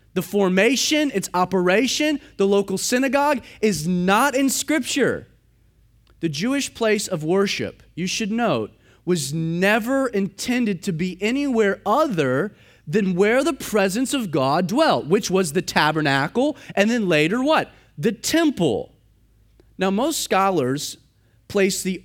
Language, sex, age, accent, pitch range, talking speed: English, male, 30-49, American, 155-235 Hz, 130 wpm